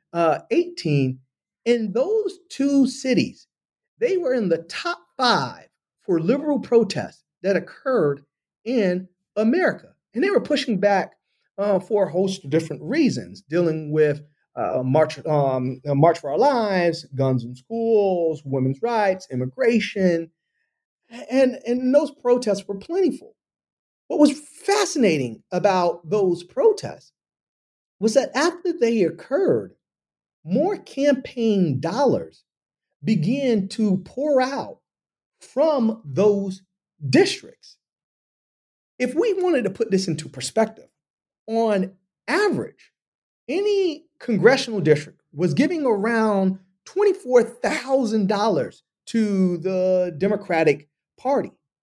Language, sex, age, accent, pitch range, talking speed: English, male, 40-59, American, 175-265 Hz, 110 wpm